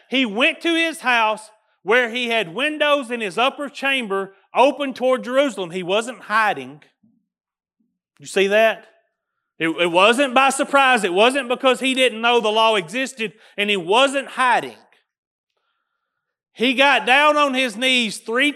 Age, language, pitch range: 40-59, English, 185-260 Hz